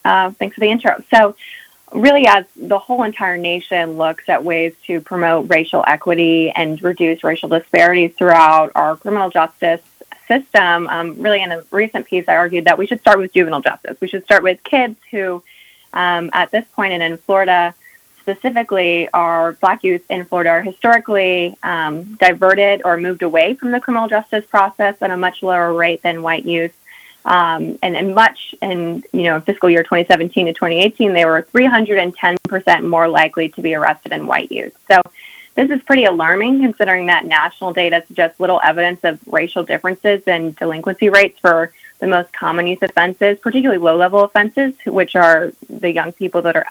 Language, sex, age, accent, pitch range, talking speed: English, female, 20-39, American, 170-205 Hz, 175 wpm